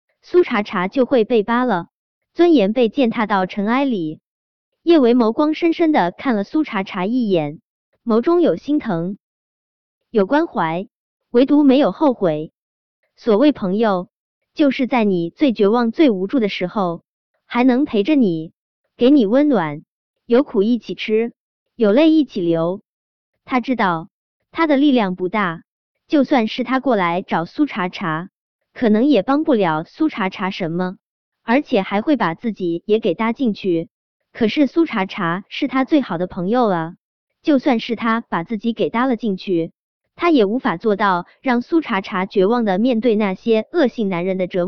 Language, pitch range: Chinese, 190-265 Hz